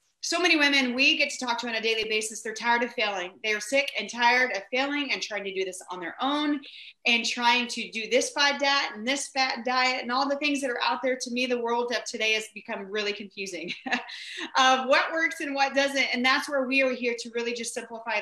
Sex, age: female, 30-49